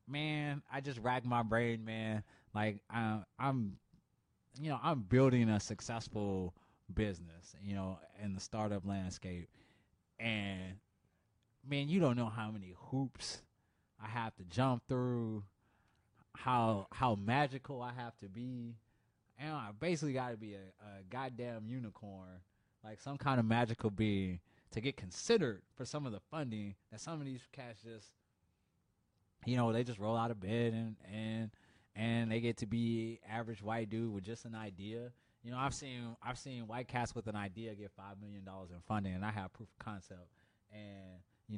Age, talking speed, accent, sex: 20-39, 175 wpm, American, male